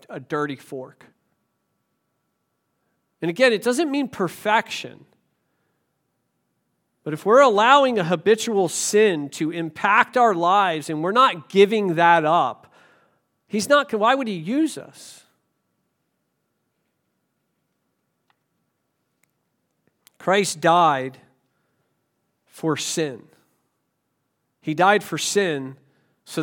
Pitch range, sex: 135-195 Hz, male